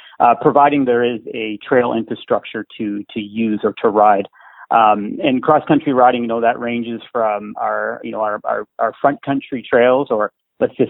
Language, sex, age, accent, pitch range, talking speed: English, male, 40-59, American, 110-125 Hz, 195 wpm